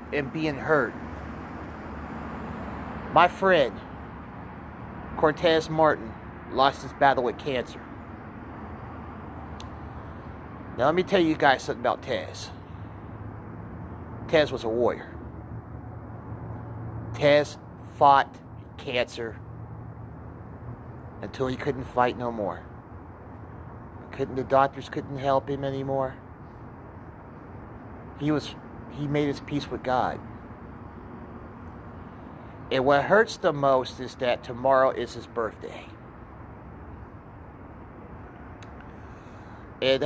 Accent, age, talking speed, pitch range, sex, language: American, 30-49, 90 wpm, 105-140 Hz, male, English